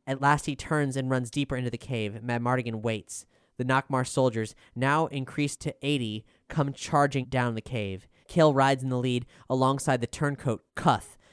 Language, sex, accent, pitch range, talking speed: English, male, American, 110-140 Hz, 180 wpm